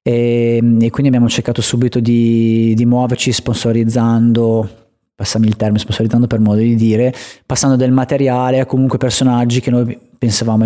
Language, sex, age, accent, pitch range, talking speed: Italian, male, 30-49, native, 115-130 Hz, 150 wpm